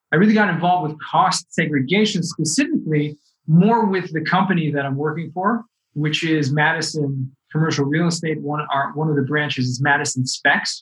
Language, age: English, 20-39